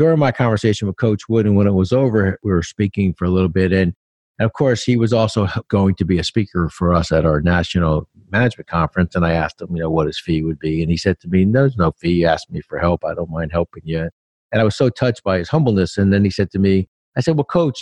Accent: American